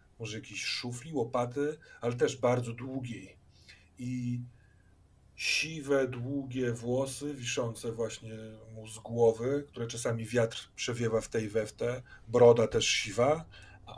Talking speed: 120 wpm